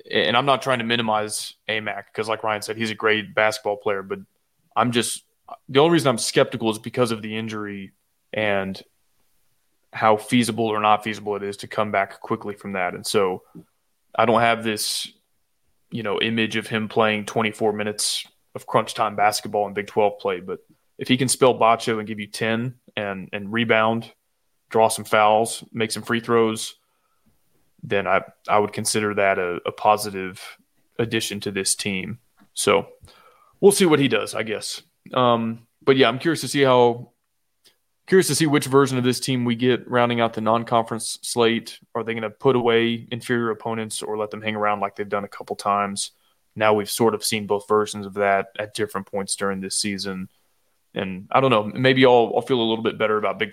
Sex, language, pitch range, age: male, English, 105-120 Hz, 20-39